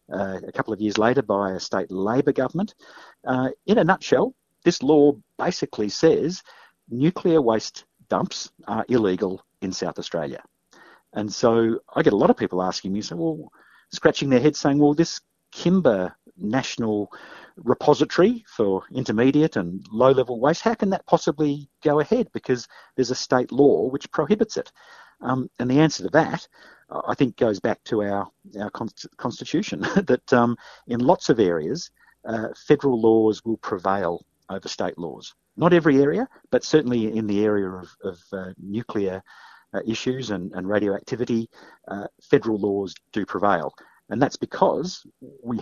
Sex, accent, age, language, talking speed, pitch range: male, Australian, 50-69, English, 160 wpm, 100-155 Hz